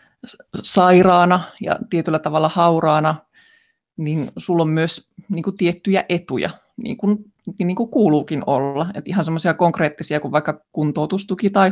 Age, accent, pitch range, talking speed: 20-39, native, 155-190 Hz, 135 wpm